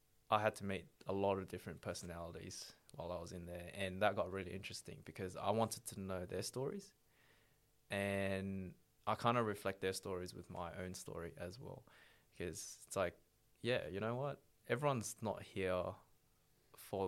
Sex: male